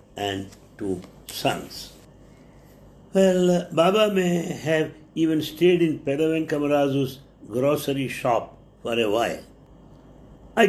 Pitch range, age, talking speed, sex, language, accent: 125-160 Hz, 60-79, 95 wpm, male, English, Indian